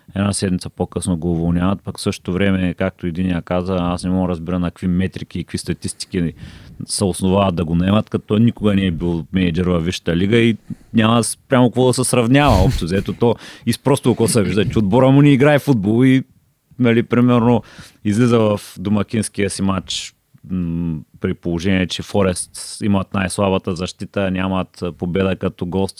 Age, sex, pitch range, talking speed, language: 30-49, male, 90-110 Hz, 180 wpm, Bulgarian